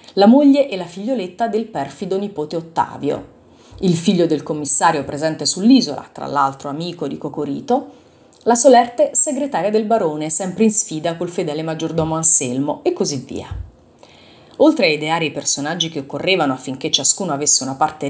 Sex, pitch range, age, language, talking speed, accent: female, 150-235 Hz, 30-49, Italian, 155 wpm, native